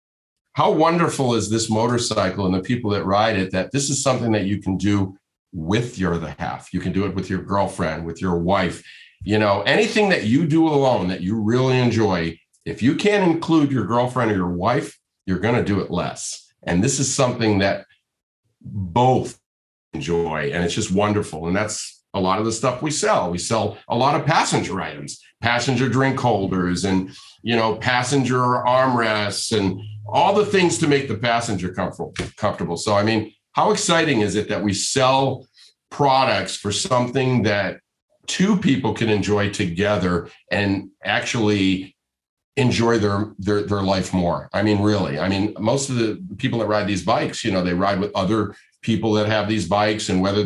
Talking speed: 185 wpm